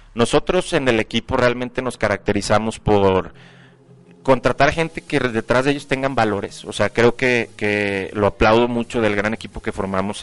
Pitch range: 105-125 Hz